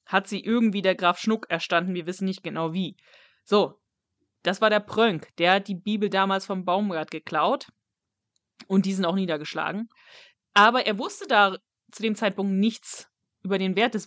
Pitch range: 175-220 Hz